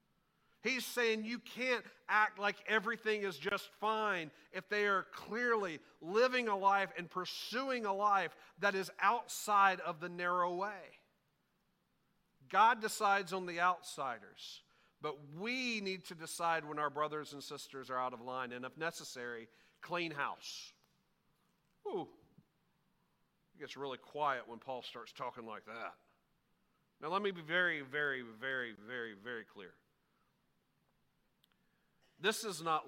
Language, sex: English, male